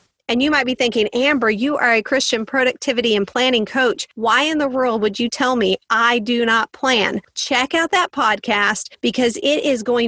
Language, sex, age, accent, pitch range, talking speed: English, female, 40-59, American, 215-290 Hz, 200 wpm